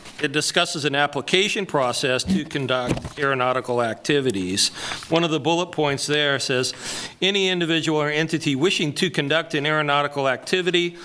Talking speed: 140 wpm